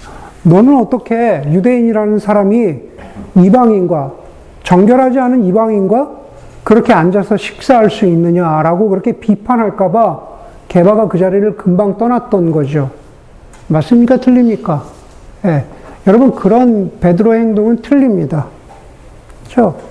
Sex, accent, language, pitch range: male, native, Korean, 185-245 Hz